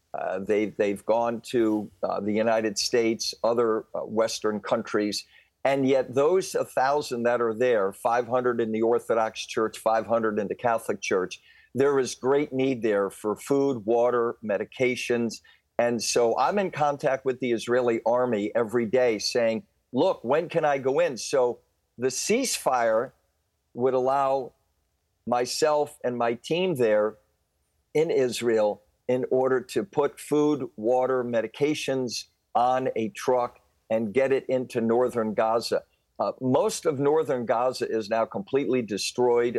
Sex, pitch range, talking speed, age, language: male, 110-130 Hz, 140 wpm, 50-69, English